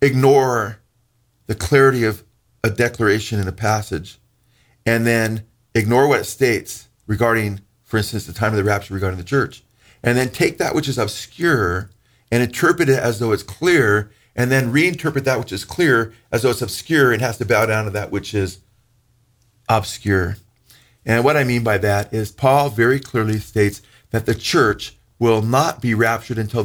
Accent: American